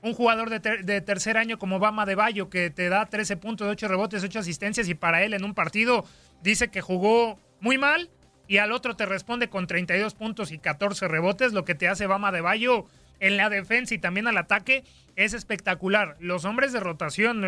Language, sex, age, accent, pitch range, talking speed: Spanish, male, 30-49, Mexican, 190-230 Hz, 210 wpm